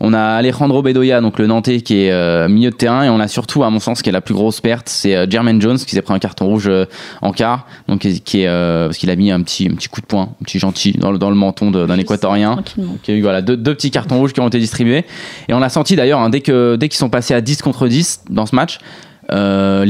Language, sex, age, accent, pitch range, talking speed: French, male, 20-39, French, 105-125 Hz, 285 wpm